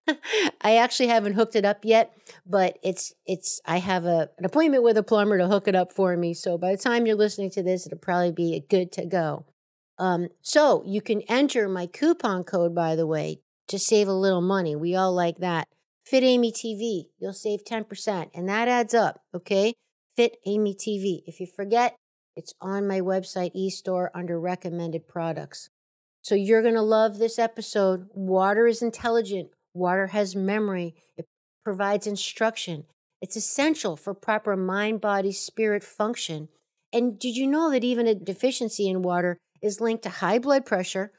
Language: English